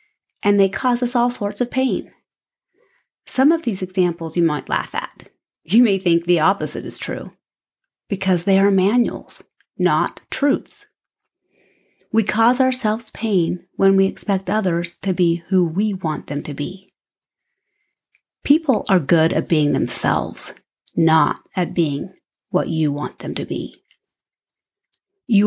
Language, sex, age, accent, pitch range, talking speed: English, female, 30-49, American, 175-225 Hz, 145 wpm